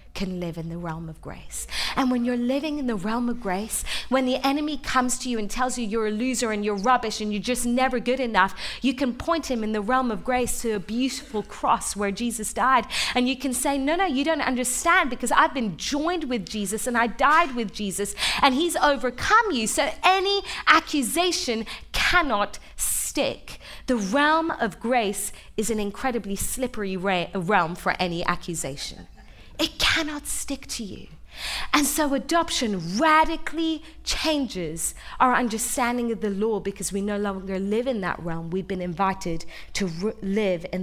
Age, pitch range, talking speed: 30-49, 195-260 Hz, 180 wpm